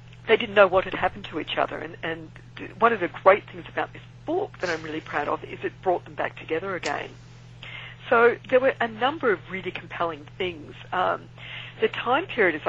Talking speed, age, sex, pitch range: 215 wpm, 50-69, female, 150-245 Hz